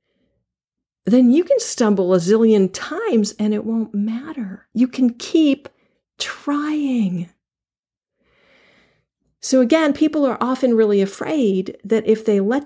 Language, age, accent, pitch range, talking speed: English, 50-69, American, 180-240 Hz, 125 wpm